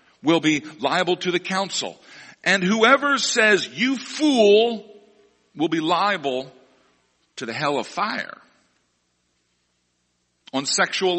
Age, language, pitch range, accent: 50-69, English, 150-210 Hz, American